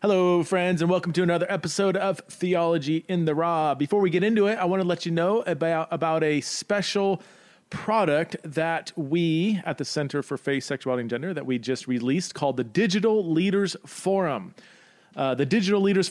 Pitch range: 140-185 Hz